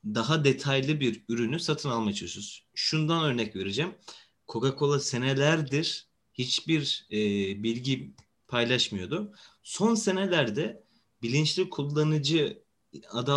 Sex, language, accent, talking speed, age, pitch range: male, Turkish, native, 90 wpm, 30-49, 115-155 Hz